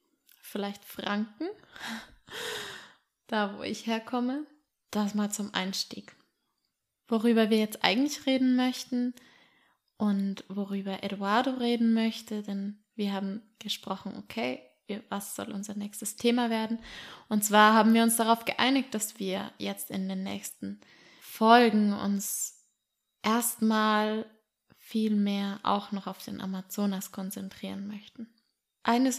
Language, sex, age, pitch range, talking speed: German, female, 20-39, 205-235 Hz, 120 wpm